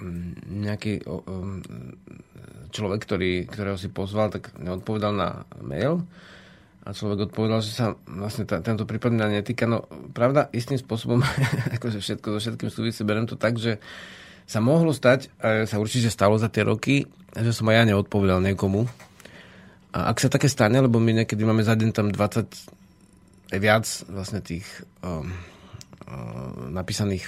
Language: Slovak